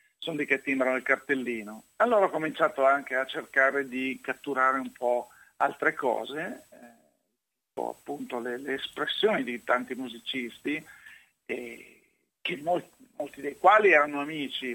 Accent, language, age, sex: native, Italian, 50-69, male